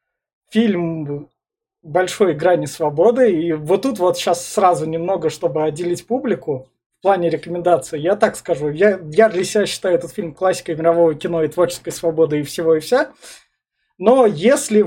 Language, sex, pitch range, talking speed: Russian, male, 165-210 Hz, 155 wpm